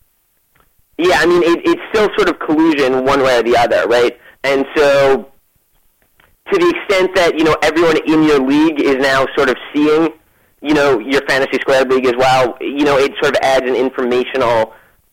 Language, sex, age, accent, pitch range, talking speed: English, male, 30-49, American, 125-160 Hz, 190 wpm